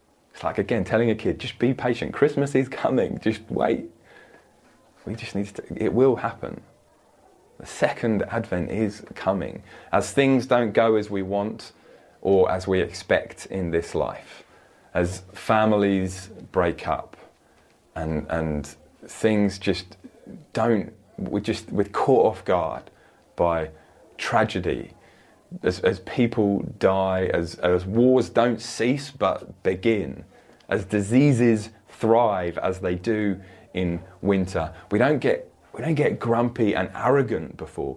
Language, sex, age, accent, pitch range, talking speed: English, male, 30-49, British, 95-115 Hz, 135 wpm